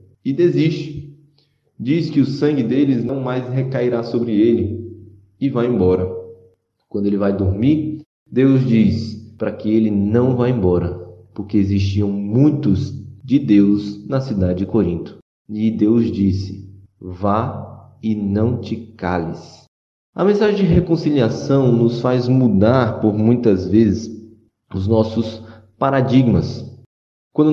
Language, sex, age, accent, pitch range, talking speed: Portuguese, male, 20-39, Brazilian, 105-130 Hz, 125 wpm